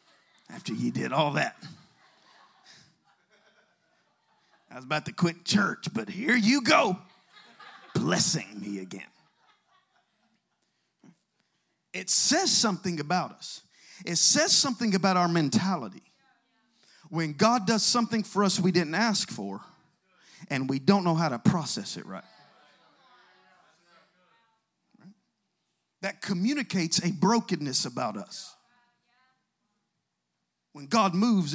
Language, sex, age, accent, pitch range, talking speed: English, male, 50-69, American, 180-255 Hz, 110 wpm